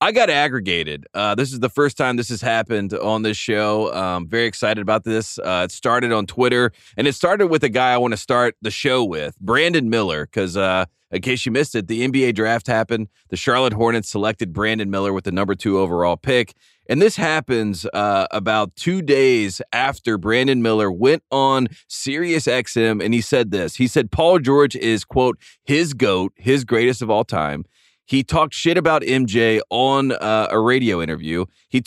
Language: English